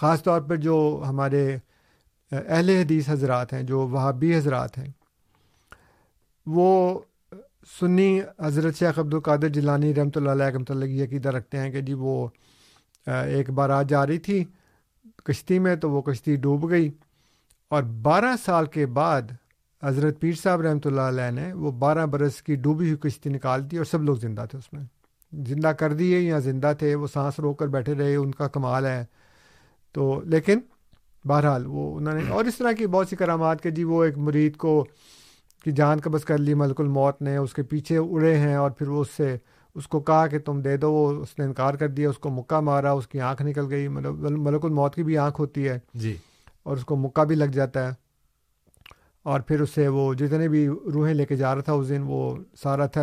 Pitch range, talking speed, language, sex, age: 135-160 Hz, 205 wpm, Urdu, male, 50-69